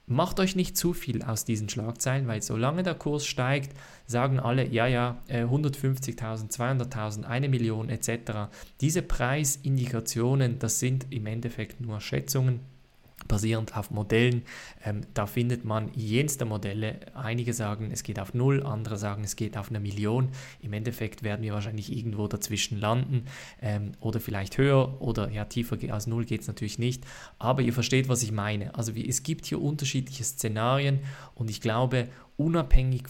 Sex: male